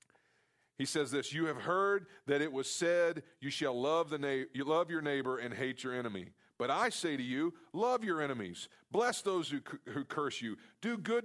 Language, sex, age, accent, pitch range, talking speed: English, male, 40-59, American, 145-190 Hz, 215 wpm